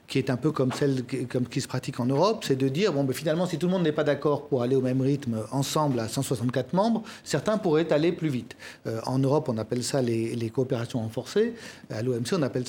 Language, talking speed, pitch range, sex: French, 245 wpm, 130-175 Hz, male